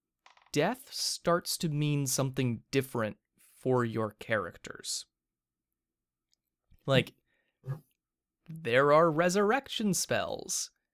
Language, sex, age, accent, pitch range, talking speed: English, male, 20-39, American, 110-150 Hz, 75 wpm